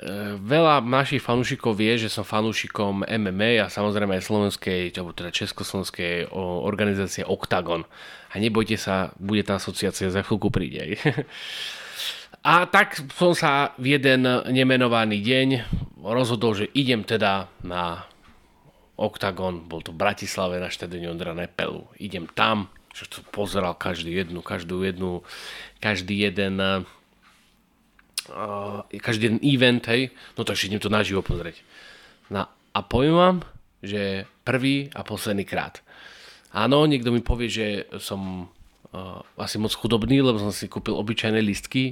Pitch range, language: 100-125 Hz, Slovak